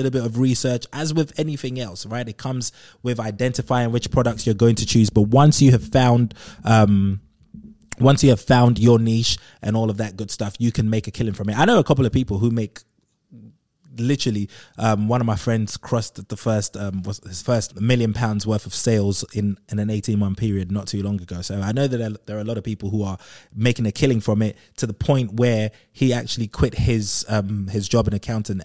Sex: male